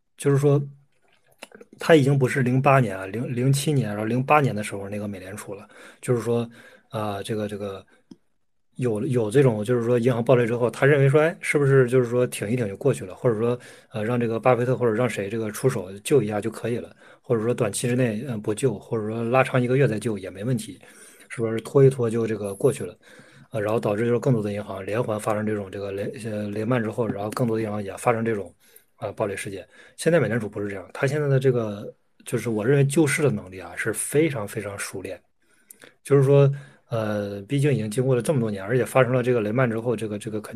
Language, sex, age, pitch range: Chinese, male, 20-39, 110-135 Hz